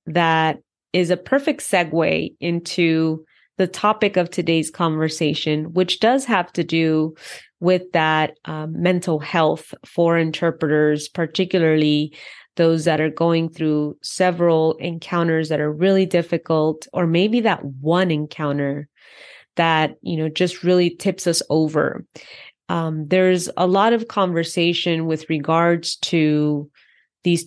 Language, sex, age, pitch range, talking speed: English, female, 30-49, 155-180 Hz, 125 wpm